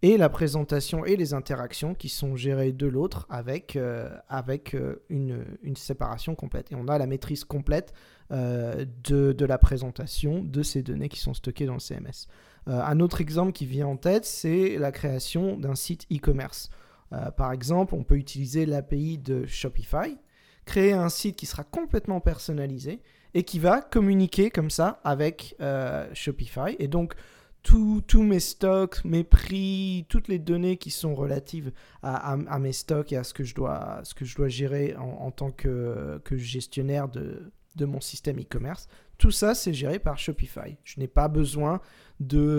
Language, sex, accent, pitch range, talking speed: French, male, French, 135-170 Hz, 180 wpm